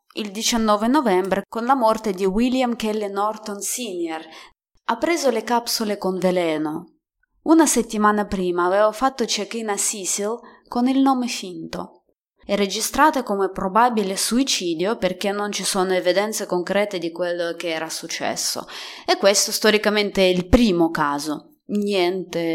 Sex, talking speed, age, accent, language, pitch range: female, 140 wpm, 20-39, native, Italian, 185-240 Hz